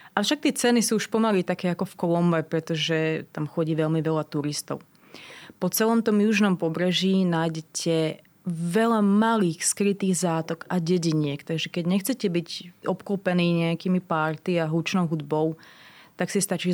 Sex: female